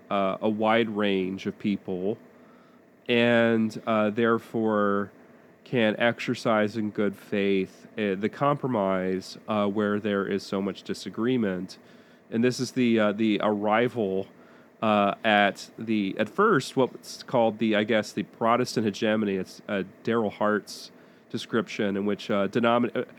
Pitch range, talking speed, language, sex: 100-120 Hz, 140 wpm, English, male